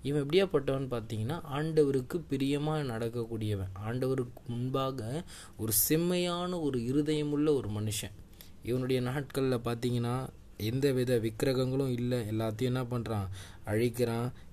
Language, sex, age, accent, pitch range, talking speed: Tamil, male, 20-39, native, 105-140 Hz, 105 wpm